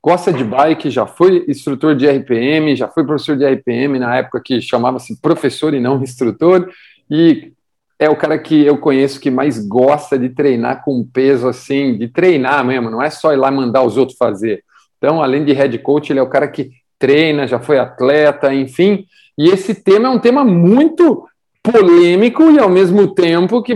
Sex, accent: male, Brazilian